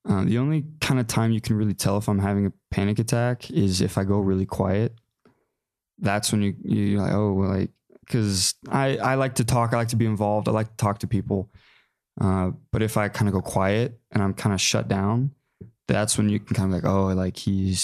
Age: 20-39